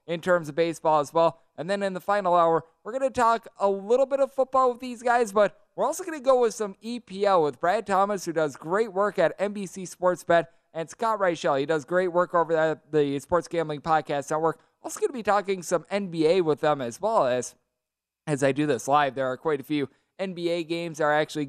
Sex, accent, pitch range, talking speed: male, American, 150-195 Hz, 240 wpm